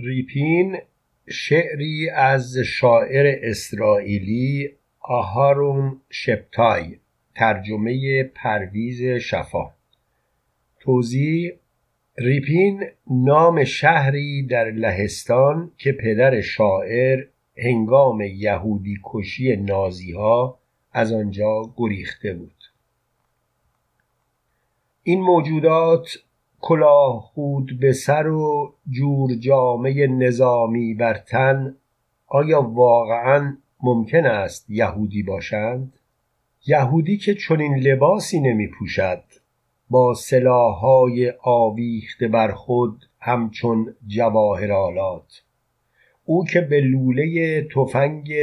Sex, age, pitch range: male, 50-69, 115-140 Hz